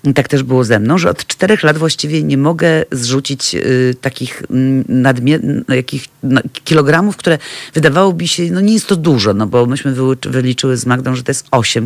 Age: 40-59